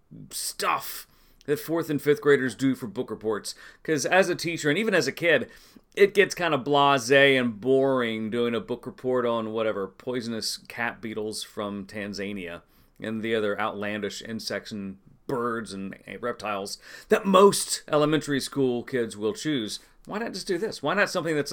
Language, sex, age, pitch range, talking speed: English, male, 40-59, 115-150 Hz, 175 wpm